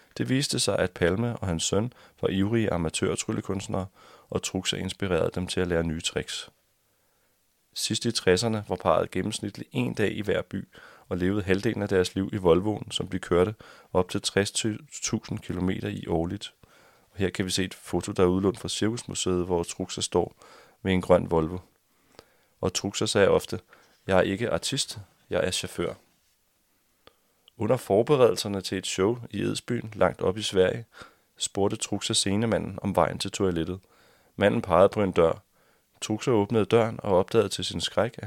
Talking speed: 175 wpm